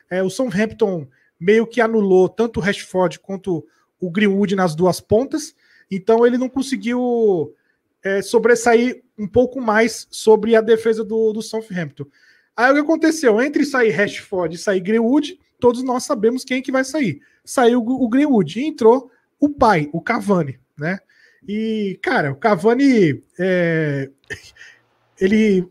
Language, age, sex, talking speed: Portuguese, 20-39, male, 150 wpm